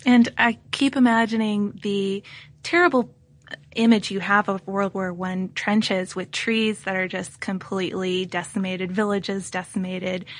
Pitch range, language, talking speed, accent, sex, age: 190-225 Hz, English, 135 wpm, American, female, 20-39